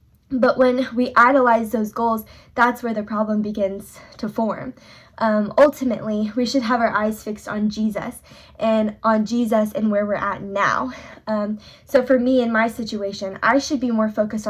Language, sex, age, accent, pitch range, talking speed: English, female, 10-29, American, 215-265 Hz, 180 wpm